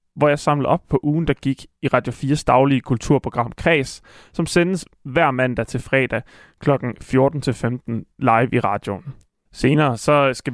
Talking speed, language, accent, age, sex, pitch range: 160 wpm, Danish, native, 20-39, male, 125-150 Hz